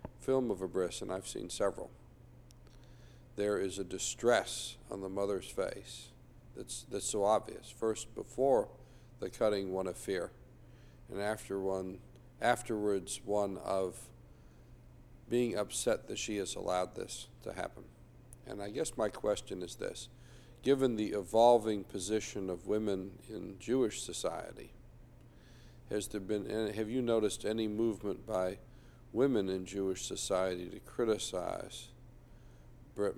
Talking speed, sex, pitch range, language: 135 wpm, male, 95-115 Hz, English